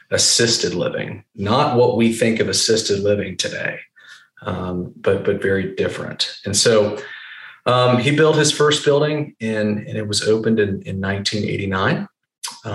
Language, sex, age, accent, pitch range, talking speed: English, male, 30-49, American, 100-110 Hz, 145 wpm